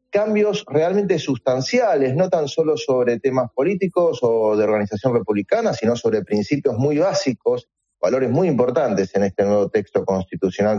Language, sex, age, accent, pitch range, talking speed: Spanish, male, 30-49, Argentinian, 105-160 Hz, 145 wpm